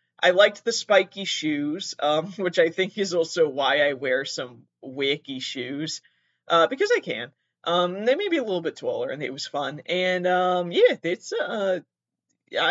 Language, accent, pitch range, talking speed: English, American, 145-205 Hz, 180 wpm